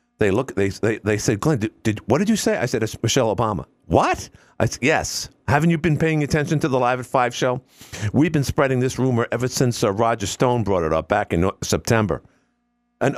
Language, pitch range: English, 105-140 Hz